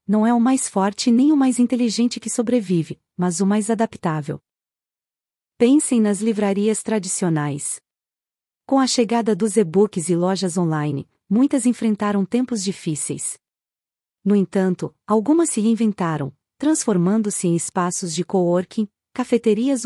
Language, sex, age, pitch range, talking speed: Portuguese, female, 40-59, 180-235 Hz, 125 wpm